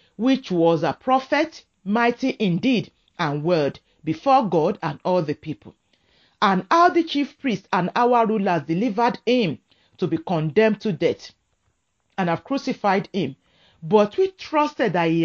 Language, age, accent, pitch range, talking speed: English, 40-59, Nigerian, 160-250 Hz, 150 wpm